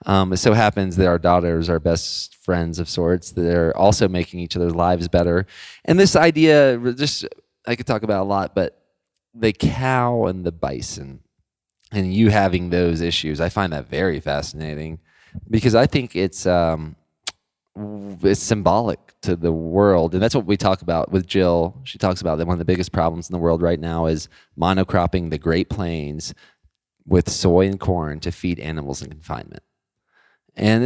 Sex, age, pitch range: male, 20-39, 85-105 Hz